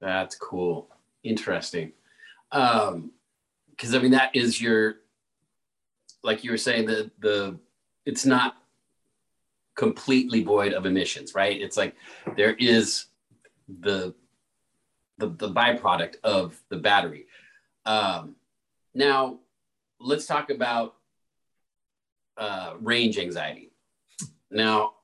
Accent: American